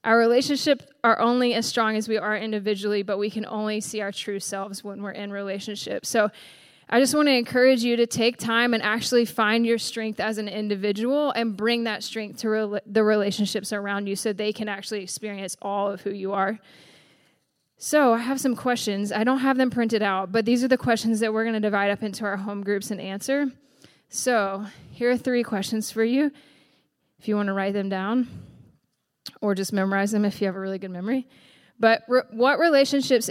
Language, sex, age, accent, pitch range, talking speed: English, female, 10-29, American, 200-235 Hz, 210 wpm